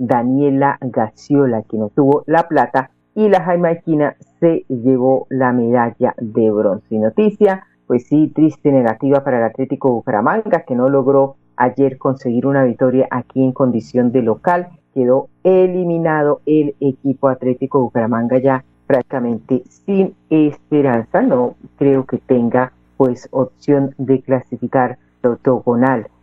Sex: female